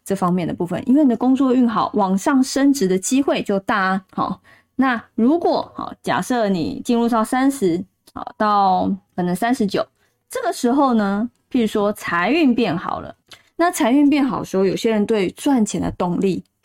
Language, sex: Chinese, female